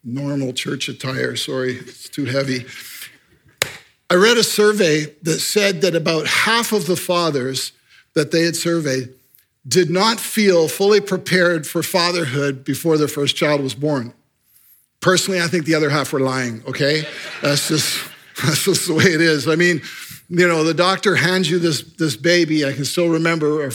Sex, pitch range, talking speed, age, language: male, 150-190 Hz, 170 wpm, 50-69, English